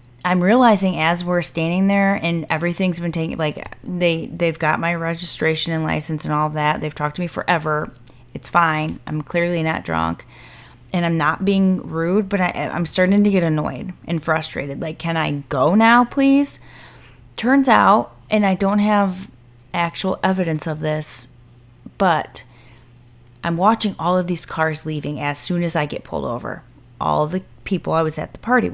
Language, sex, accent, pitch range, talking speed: English, female, American, 155-190 Hz, 175 wpm